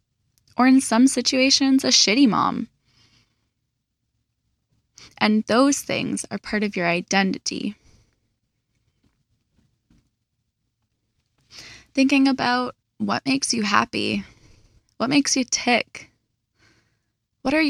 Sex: female